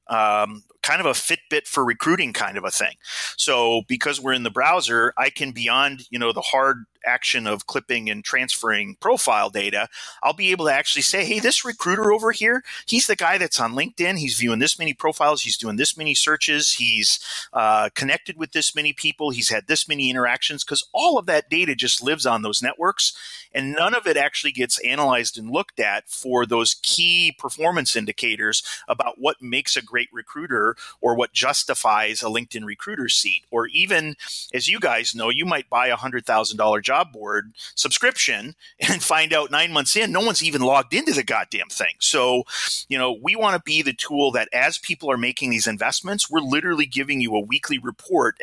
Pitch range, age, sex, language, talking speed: 115-160 Hz, 30-49, male, English, 195 wpm